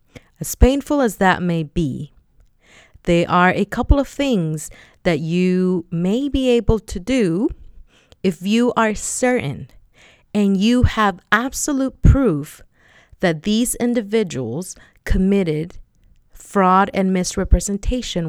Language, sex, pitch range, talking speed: English, female, 170-235 Hz, 115 wpm